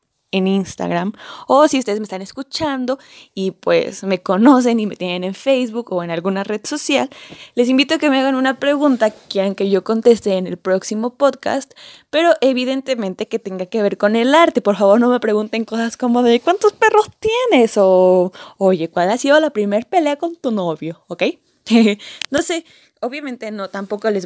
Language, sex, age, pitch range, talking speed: Spanish, female, 10-29, 190-255 Hz, 190 wpm